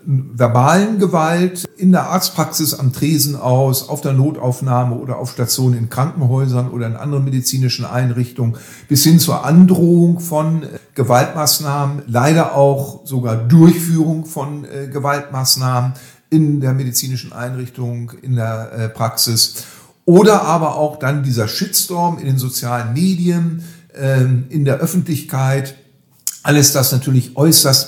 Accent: German